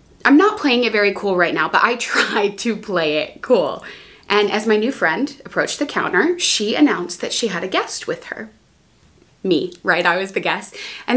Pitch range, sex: 190-275 Hz, female